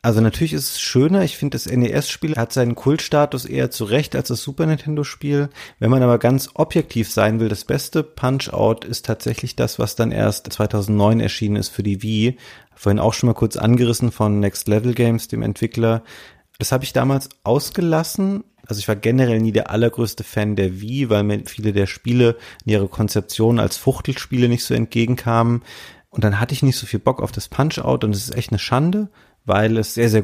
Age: 30-49